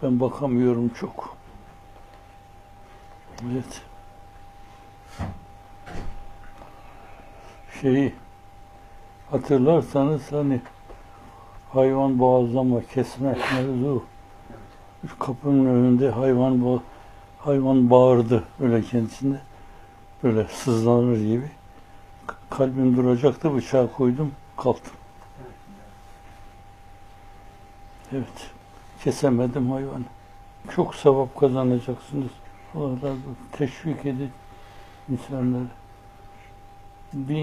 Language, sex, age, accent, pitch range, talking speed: Turkish, male, 60-79, native, 100-135 Hz, 65 wpm